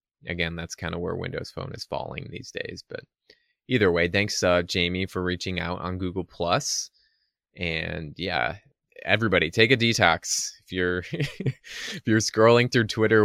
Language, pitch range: English, 85-100 Hz